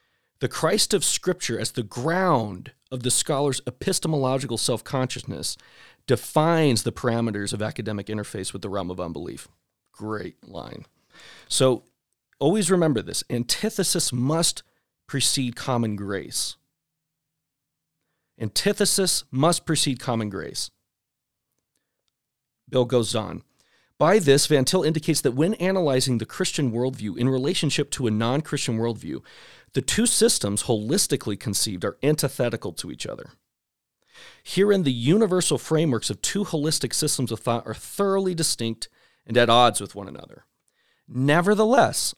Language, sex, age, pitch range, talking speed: English, male, 40-59, 115-155 Hz, 125 wpm